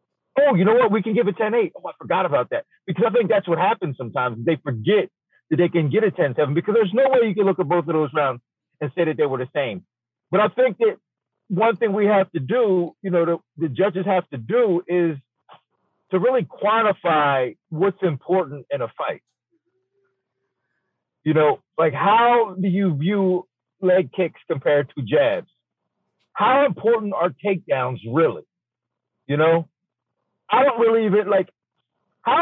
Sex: male